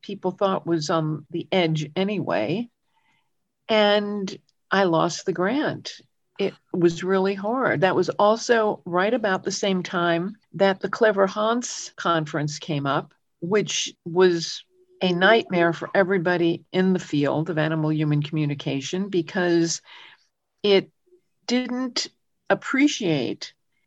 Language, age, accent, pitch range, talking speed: English, 50-69, American, 175-240 Hz, 120 wpm